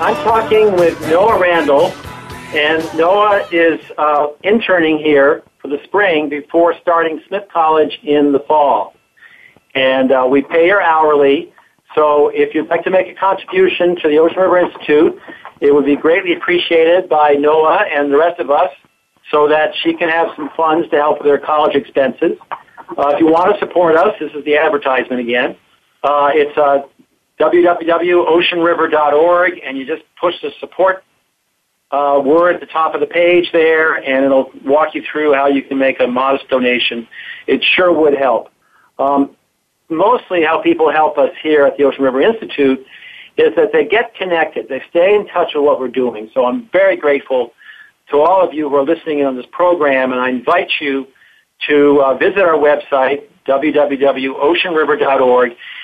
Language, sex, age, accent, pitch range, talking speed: English, male, 50-69, American, 140-175 Hz, 175 wpm